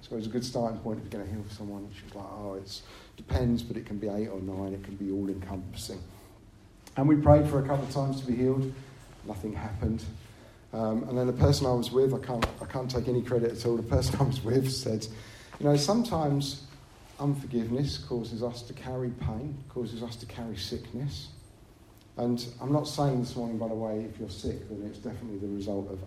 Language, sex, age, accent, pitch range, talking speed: English, male, 40-59, British, 105-130 Hz, 225 wpm